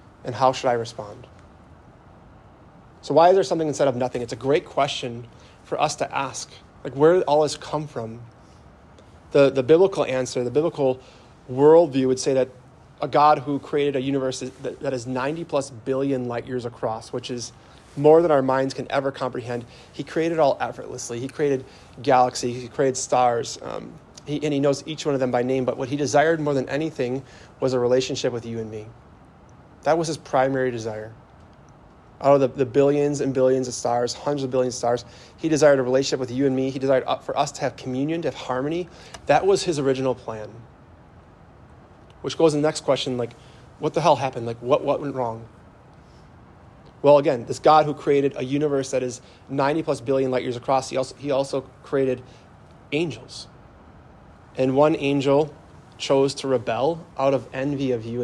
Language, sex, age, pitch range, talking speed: English, male, 30-49, 120-145 Hz, 195 wpm